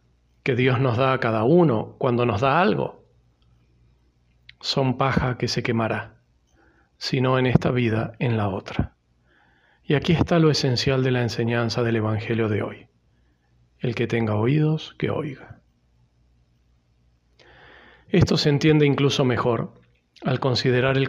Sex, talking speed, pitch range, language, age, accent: male, 140 wpm, 105-135 Hz, Spanish, 40-59, Argentinian